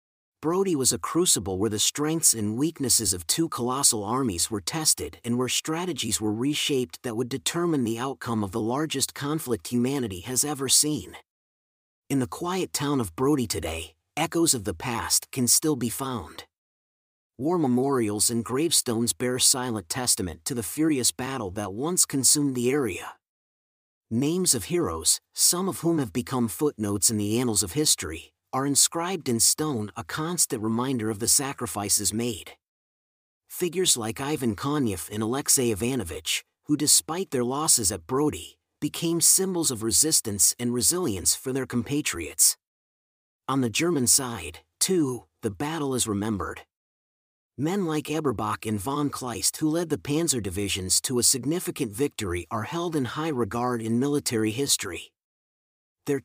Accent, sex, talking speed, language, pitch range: American, male, 155 wpm, English, 110-150 Hz